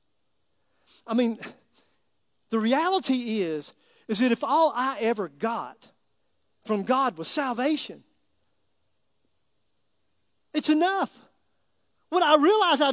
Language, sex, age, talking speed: English, male, 40-59, 100 wpm